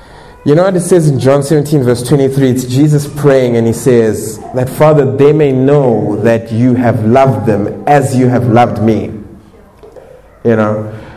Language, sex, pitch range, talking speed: English, male, 105-135 Hz, 175 wpm